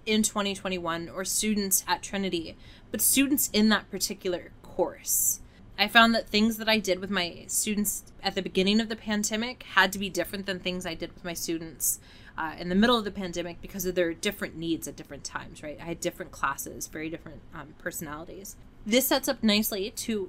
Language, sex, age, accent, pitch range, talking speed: English, female, 20-39, American, 185-215 Hz, 200 wpm